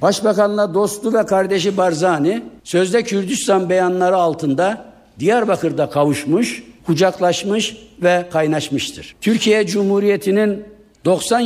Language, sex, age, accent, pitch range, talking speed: Turkish, male, 60-79, native, 185-250 Hz, 90 wpm